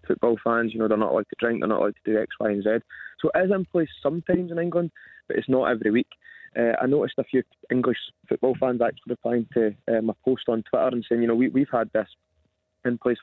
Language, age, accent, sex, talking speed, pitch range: English, 20-39, British, male, 260 wpm, 110-130 Hz